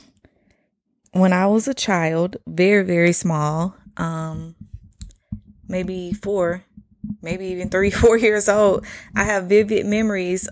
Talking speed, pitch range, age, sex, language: 120 wpm, 170-210 Hz, 20-39, female, English